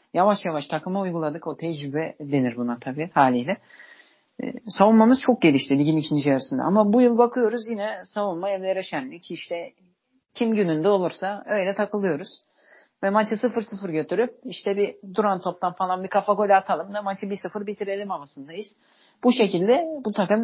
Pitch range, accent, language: 170-235 Hz, native, Turkish